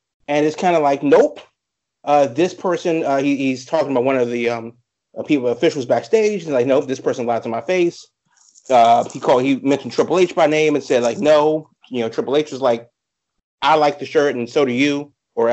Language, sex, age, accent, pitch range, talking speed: English, male, 30-49, American, 120-155 Hz, 225 wpm